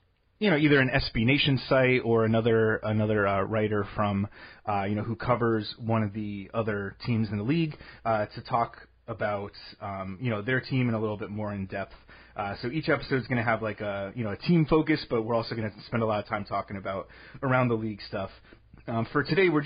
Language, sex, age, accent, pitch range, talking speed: English, male, 30-49, American, 105-130 Hz, 235 wpm